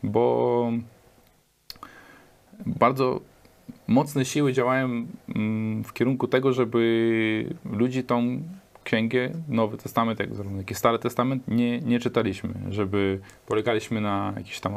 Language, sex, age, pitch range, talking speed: Polish, male, 20-39, 100-125 Hz, 110 wpm